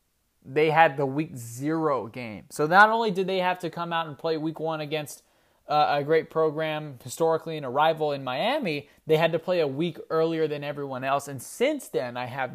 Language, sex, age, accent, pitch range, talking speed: English, male, 20-39, American, 130-165 Hz, 215 wpm